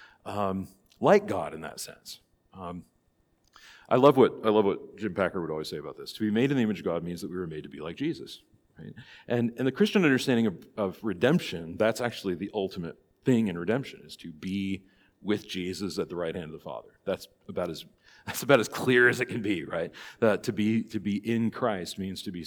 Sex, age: male, 40-59